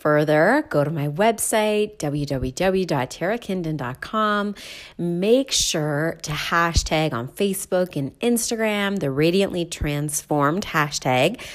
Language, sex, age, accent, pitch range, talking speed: English, female, 30-49, American, 150-210 Hz, 95 wpm